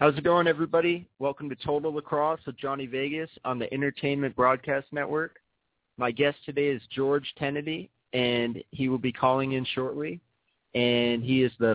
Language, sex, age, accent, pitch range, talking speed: English, male, 30-49, American, 115-135 Hz, 170 wpm